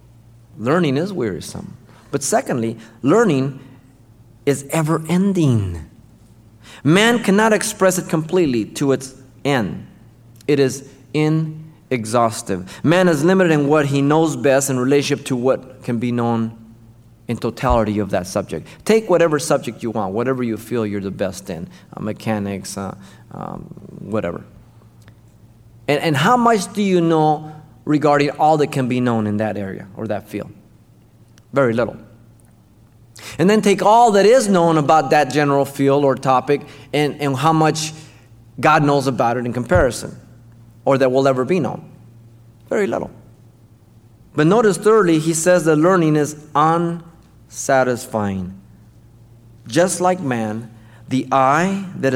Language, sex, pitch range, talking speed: English, male, 115-155 Hz, 140 wpm